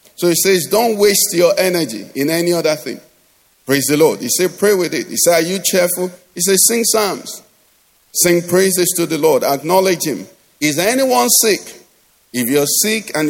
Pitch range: 155-190 Hz